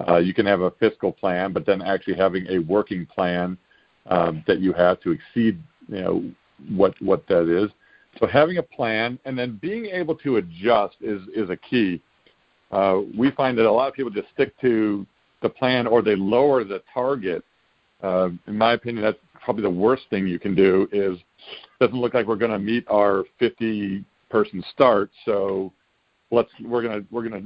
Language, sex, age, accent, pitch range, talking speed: English, male, 50-69, American, 100-135 Hz, 190 wpm